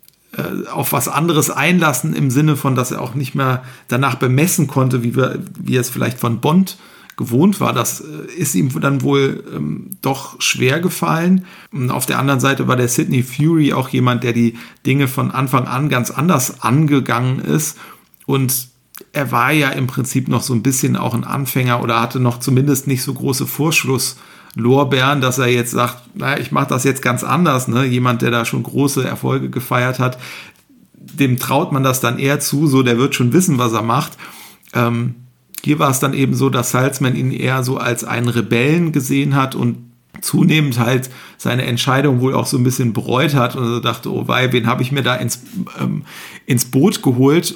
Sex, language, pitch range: male, German, 125-140 Hz